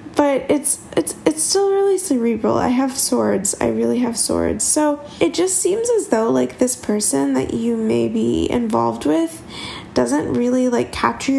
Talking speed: 175 wpm